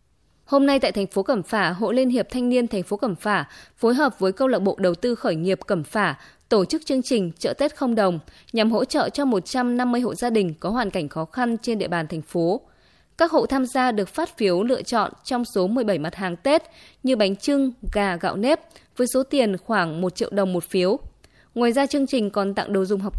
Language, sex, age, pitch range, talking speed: Vietnamese, female, 20-39, 195-255 Hz, 240 wpm